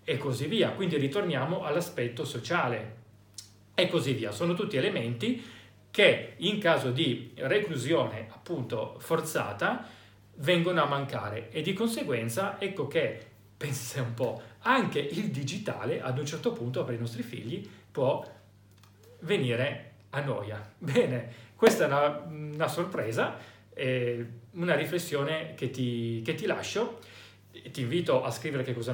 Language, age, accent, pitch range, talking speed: Italian, 40-59, native, 120-160 Hz, 135 wpm